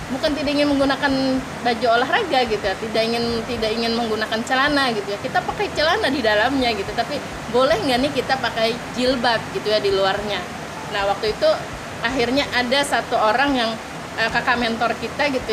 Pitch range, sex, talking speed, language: 210-255 Hz, female, 180 wpm, Indonesian